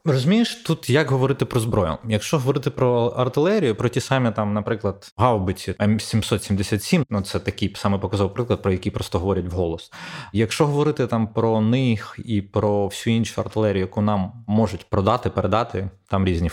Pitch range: 100-125 Hz